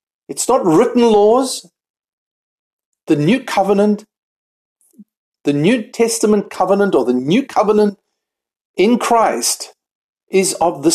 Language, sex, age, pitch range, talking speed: English, male, 50-69, 170-290 Hz, 110 wpm